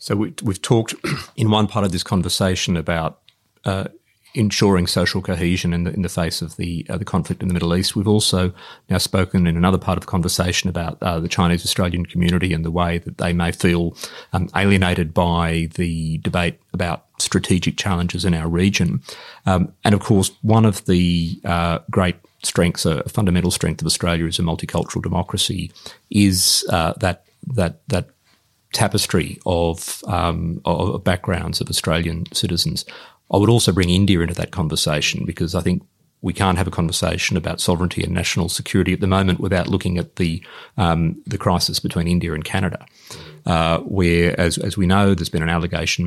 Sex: male